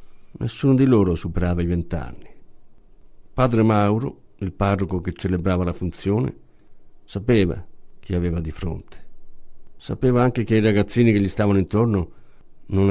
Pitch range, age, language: 90-125 Hz, 50-69, Italian